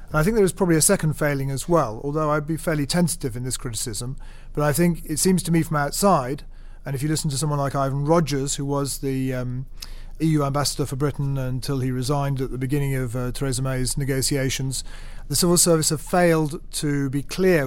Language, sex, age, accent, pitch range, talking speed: English, male, 40-59, British, 130-155 Hz, 215 wpm